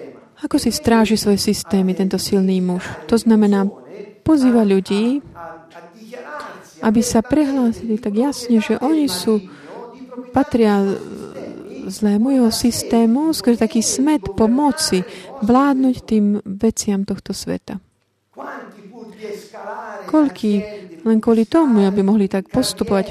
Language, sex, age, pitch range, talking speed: Slovak, female, 30-49, 195-245 Hz, 105 wpm